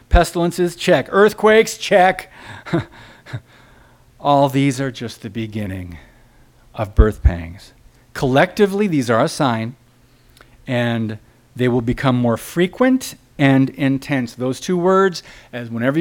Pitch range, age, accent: 120-160 Hz, 50-69, American